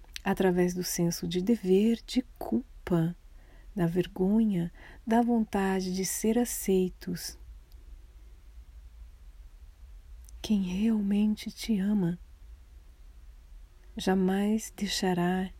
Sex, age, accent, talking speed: female, 40-59, Brazilian, 75 wpm